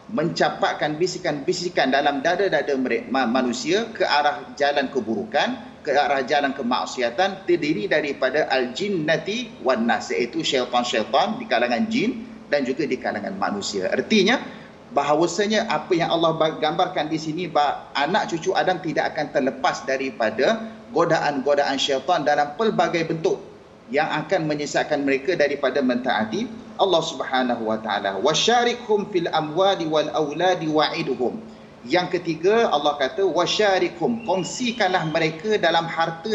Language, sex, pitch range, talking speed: Malayalam, male, 150-195 Hz, 125 wpm